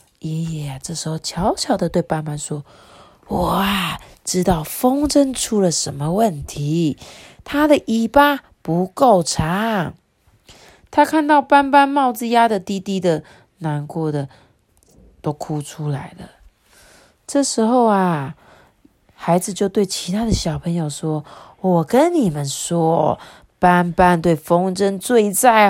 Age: 20-39